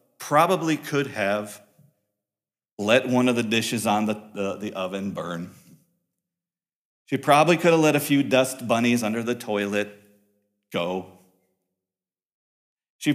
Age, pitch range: 40-59, 105-150 Hz